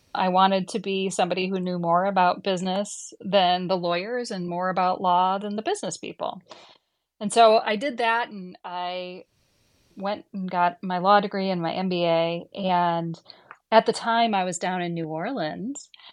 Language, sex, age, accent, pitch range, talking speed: English, female, 30-49, American, 180-220 Hz, 175 wpm